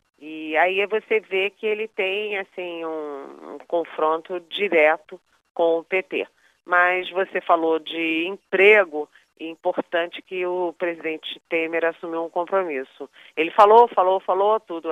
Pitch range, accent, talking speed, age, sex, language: 165-195 Hz, Brazilian, 135 wpm, 40-59, female, Portuguese